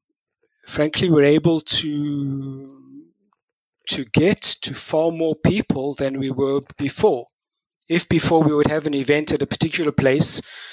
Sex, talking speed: male, 140 wpm